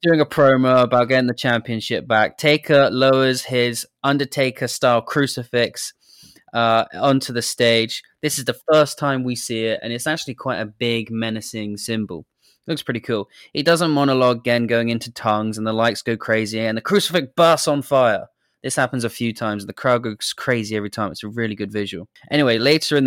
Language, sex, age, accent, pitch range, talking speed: English, male, 20-39, British, 110-130 Hz, 200 wpm